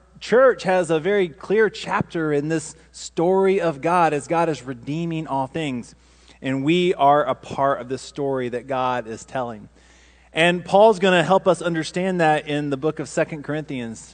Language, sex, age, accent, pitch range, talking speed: English, male, 30-49, American, 135-180 Hz, 185 wpm